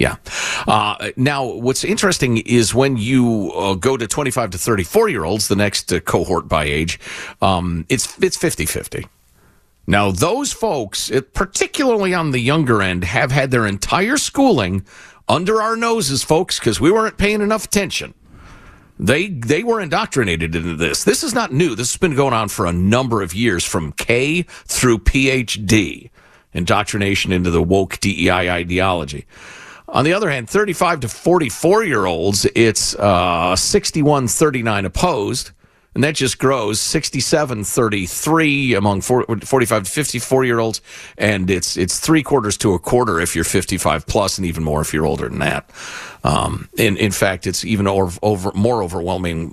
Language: English